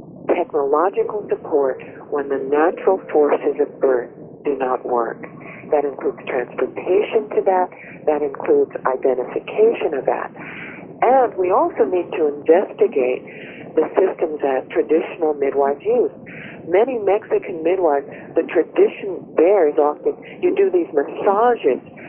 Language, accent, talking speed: English, American, 120 wpm